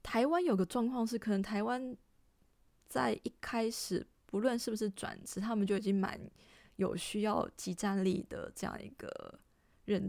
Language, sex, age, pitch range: Chinese, female, 20-39, 190-225 Hz